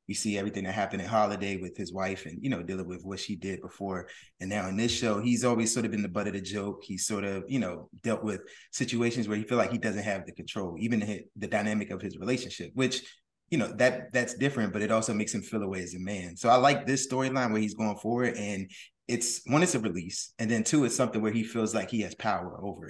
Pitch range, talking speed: 95-120 Hz, 265 wpm